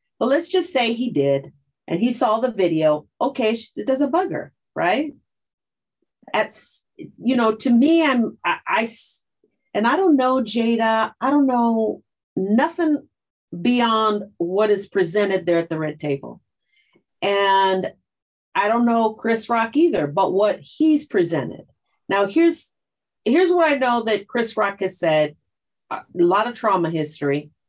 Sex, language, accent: female, English, American